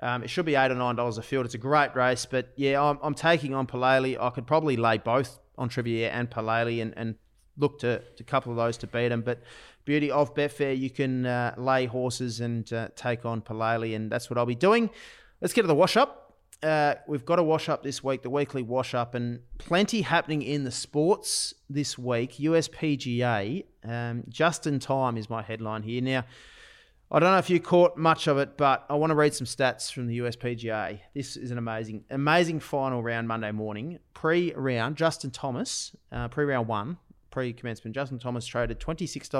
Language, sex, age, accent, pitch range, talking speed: English, male, 30-49, Australian, 120-145 Hz, 205 wpm